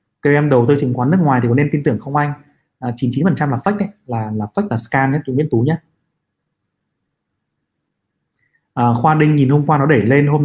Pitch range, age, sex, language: 115-145 Hz, 20-39, male, Vietnamese